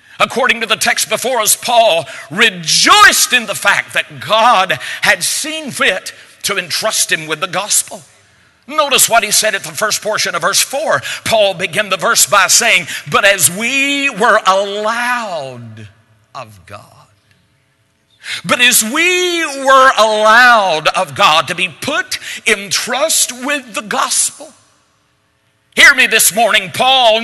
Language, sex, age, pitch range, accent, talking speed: English, male, 50-69, 195-285 Hz, American, 145 wpm